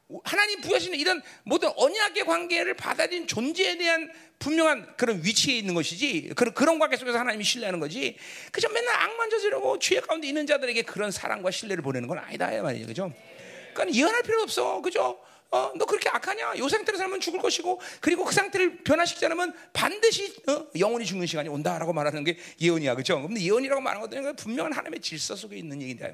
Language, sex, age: Korean, male, 40-59